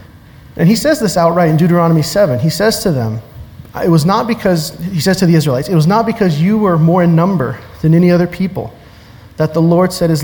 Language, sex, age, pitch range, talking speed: English, male, 30-49, 125-165 Hz, 230 wpm